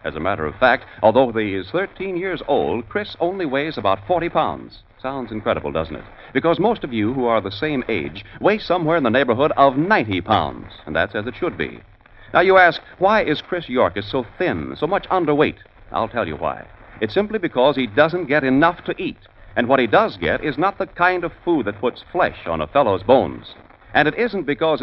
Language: English